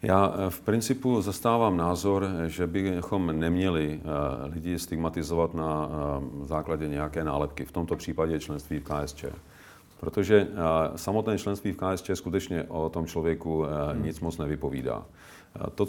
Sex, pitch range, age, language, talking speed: male, 80-95 Hz, 40-59, Czech, 125 wpm